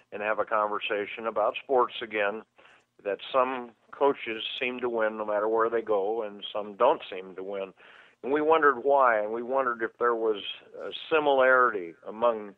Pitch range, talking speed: 110-140 Hz, 175 wpm